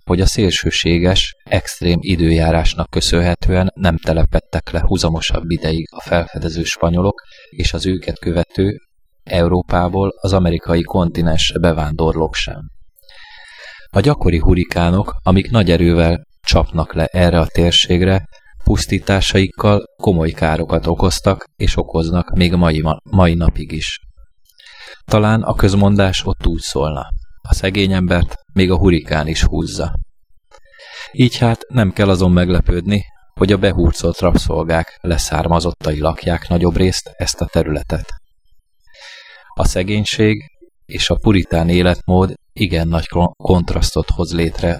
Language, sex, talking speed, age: Hungarian, male, 120 wpm, 20-39